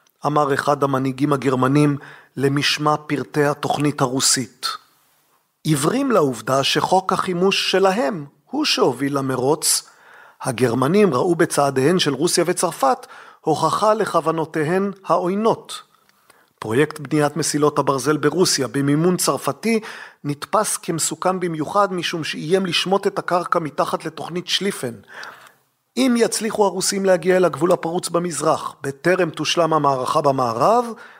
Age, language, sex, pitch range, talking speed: 40-59, Hebrew, male, 145-185 Hz, 105 wpm